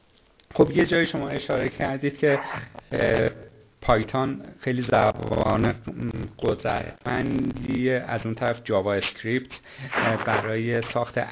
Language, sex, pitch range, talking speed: Persian, male, 110-150 Hz, 95 wpm